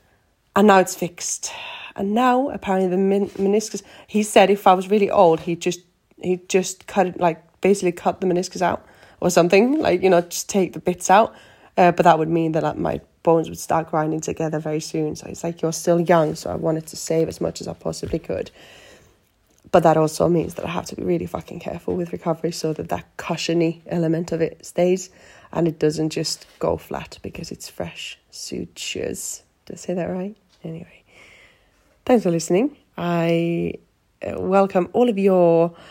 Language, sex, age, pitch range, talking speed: English, female, 20-39, 165-195 Hz, 190 wpm